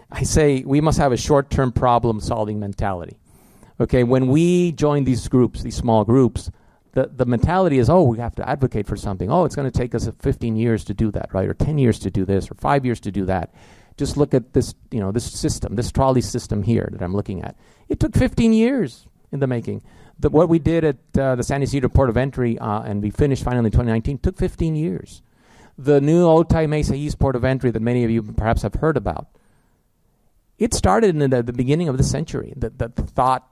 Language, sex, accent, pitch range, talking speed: English, male, American, 105-135 Hz, 225 wpm